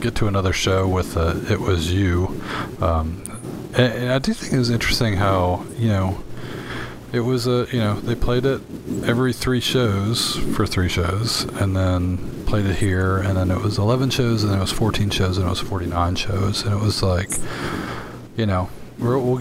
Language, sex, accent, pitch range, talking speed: English, male, American, 90-115 Hz, 190 wpm